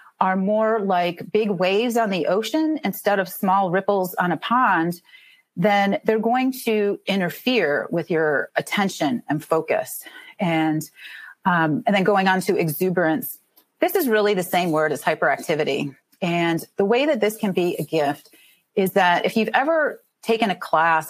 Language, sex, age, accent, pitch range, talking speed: English, female, 30-49, American, 175-225 Hz, 165 wpm